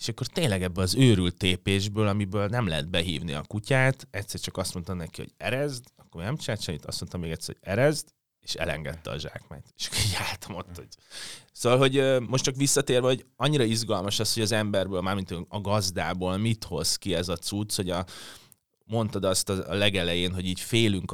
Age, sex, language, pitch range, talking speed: 30-49, male, Hungarian, 90-105 Hz, 195 wpm